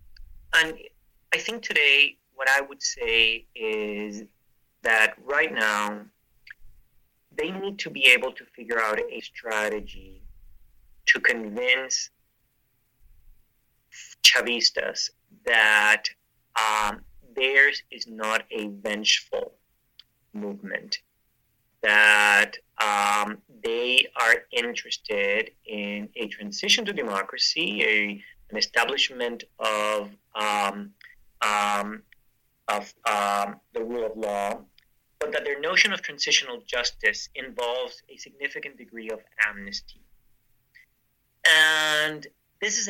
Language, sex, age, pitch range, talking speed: English, male, 30-49, 105-155 Hz, 95 wpm